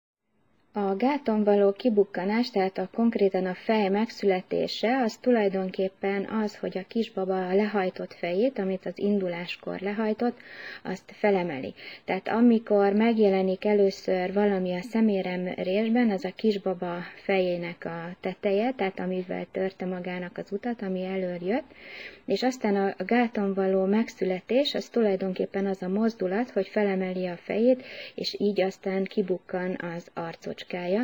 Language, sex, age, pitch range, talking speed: Hungarian, female, 30-49, 185-215 Hz, 130 wpm